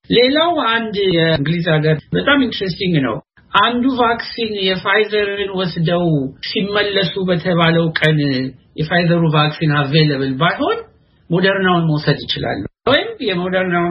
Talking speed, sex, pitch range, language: 135 wpm, male, 150-220 Hz, Amharic